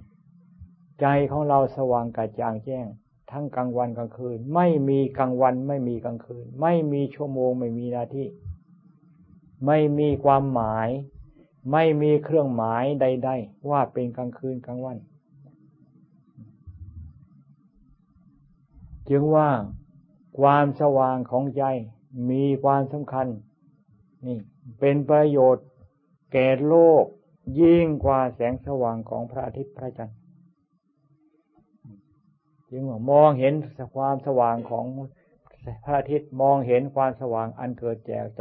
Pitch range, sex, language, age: 120-145 Hz, male, Thai, 60-79